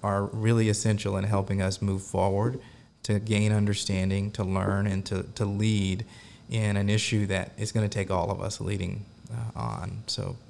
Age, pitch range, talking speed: 30-49, 100-115 Hz, 175 wpm